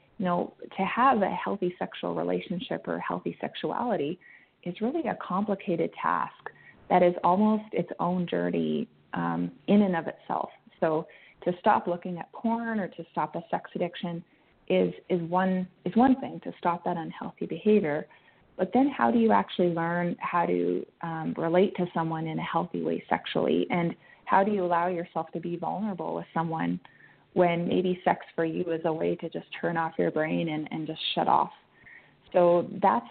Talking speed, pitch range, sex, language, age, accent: 180 wpm, 160-185 Hz, female, English, 20-39, American